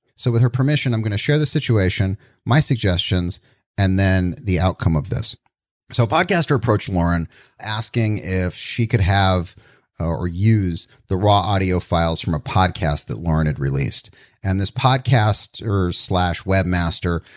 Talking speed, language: 160 wpm, English